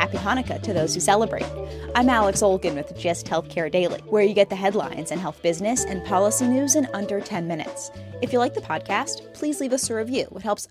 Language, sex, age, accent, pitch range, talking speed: English, female, 20-39, American, 175-230 Hz, 225 wpm